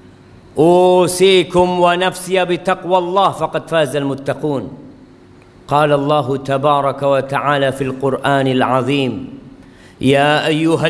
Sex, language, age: male, Malay, 50-69